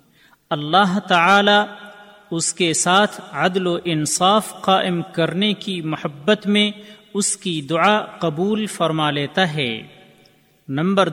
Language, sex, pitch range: Urdu, male, 160-205 Hz